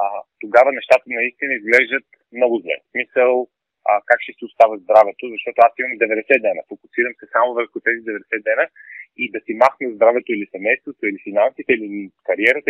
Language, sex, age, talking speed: Bulgarian, male, 30-49, 180 wpm